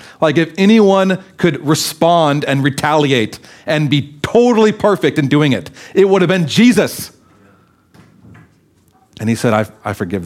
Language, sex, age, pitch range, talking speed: English, male, 40-59, 95-130 Hz, 145 wpm